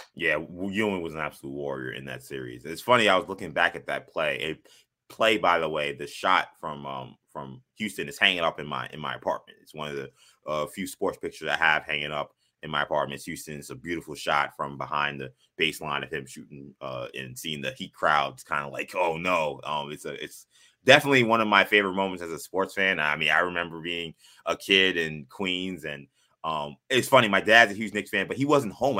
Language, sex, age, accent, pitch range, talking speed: English, male, 20-39, American, 80-125 Hz, 235 wpm